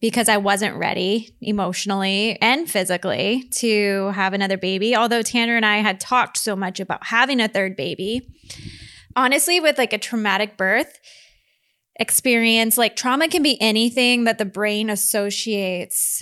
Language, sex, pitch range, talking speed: English, female, 200-245 Hz, 150 wpm